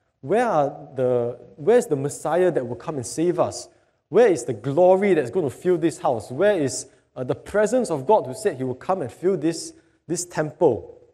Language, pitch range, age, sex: English, 120-165 Hz, 20-39, male